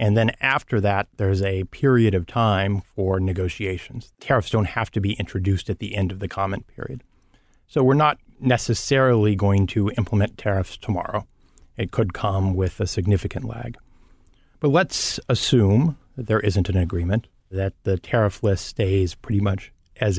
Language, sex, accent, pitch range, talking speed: English, male, American, 95-115 Hz, 165 wpm